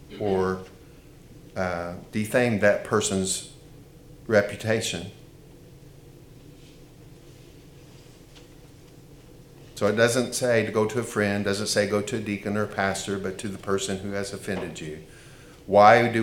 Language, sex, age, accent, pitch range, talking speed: English, male, 50-69, American, 105-145 Hz, 120 wpm